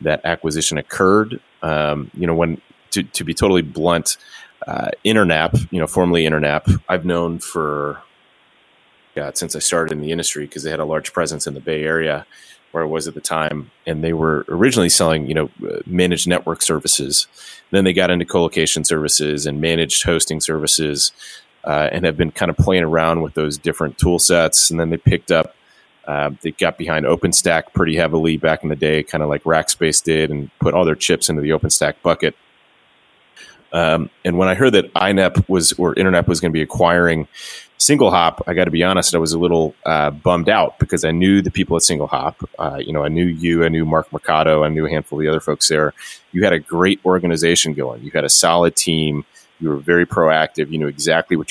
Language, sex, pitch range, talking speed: English, male, 75-85 Hz, 210 wpm